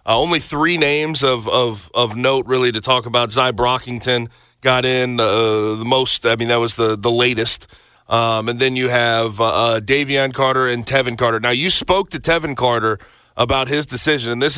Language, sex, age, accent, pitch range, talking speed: English, male, 30-49, American, 120-145 Hz, 200 wpm